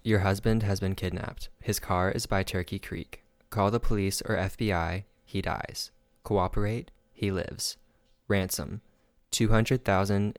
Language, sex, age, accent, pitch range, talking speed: English, male, 20-39, American, 90-105 Hz, 135 wpm